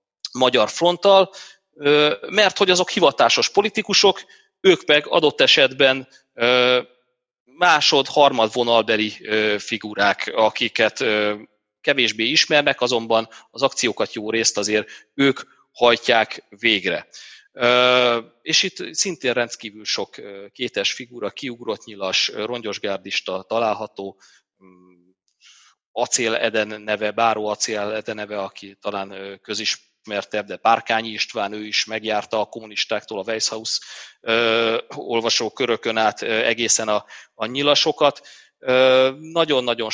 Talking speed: 95 wpm